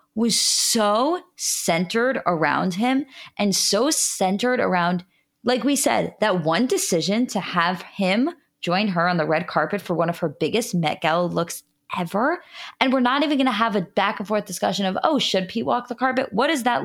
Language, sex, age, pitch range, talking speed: English, female, 20-39, 185-255 Hz, 195 wpm